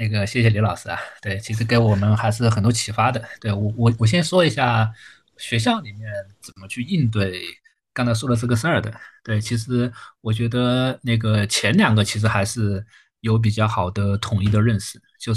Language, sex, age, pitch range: Chinese, male, 20-39, 100-115 Hz